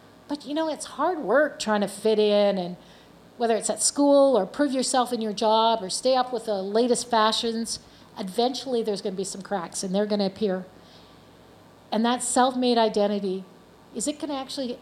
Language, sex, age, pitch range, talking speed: English, female, 50-69, 200-245 Hz, 200 wpm